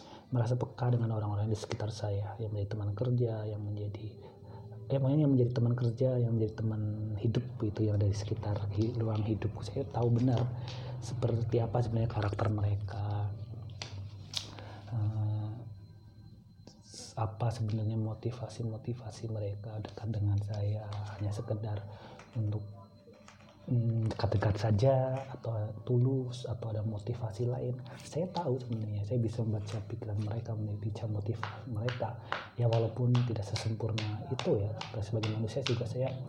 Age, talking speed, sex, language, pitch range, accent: 30-49, 125 wpm, male, Indonesian, 105-120 Hz, native